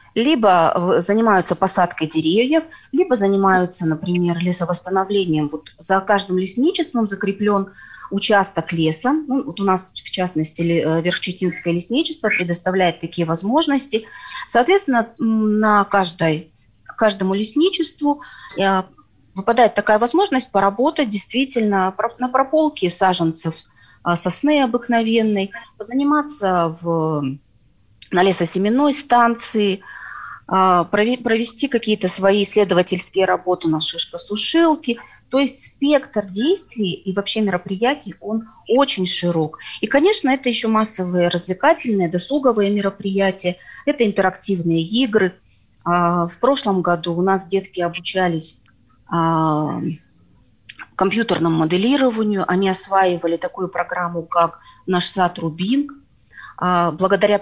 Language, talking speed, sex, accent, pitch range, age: Russian, 95 wpm, female, native, 175-230 Hz, 30-49